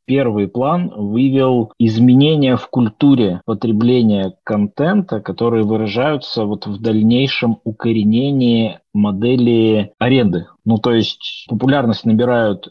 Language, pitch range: Russian, 105-130 Hz